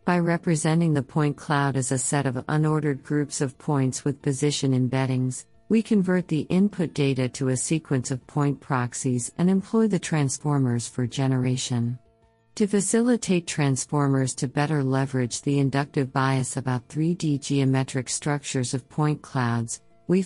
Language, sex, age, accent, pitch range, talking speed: English, female, 50-69, American, 130-150 Hz, 150 wpm